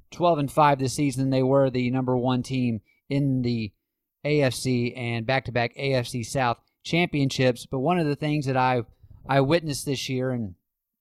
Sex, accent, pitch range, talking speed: male, American, 115-135 Hz, 170 wpm